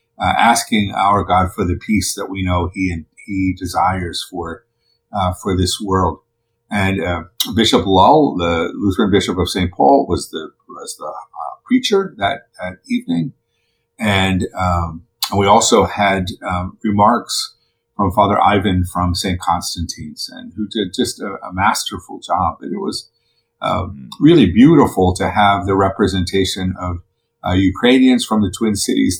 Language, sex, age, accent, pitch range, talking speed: English, male, 50-69, American, 95-115 Hz, 160 wpm